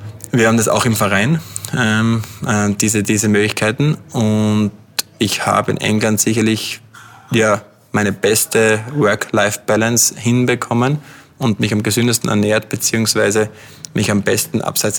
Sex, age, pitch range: male, 20-39, 105-115 Hz